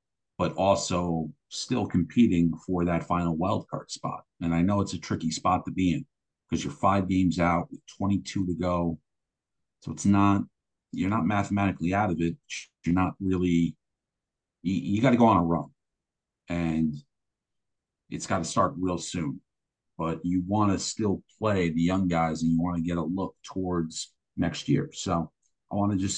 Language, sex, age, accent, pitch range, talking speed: English, male, 50-69, American, 85-95 Hz, 185 wpm